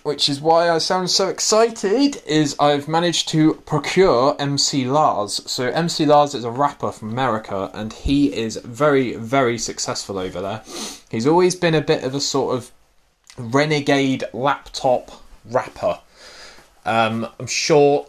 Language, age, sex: English, 20-39, male